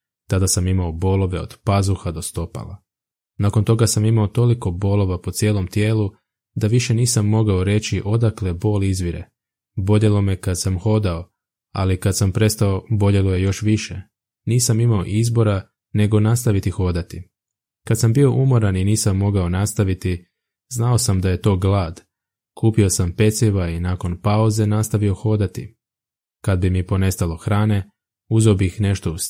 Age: 20-39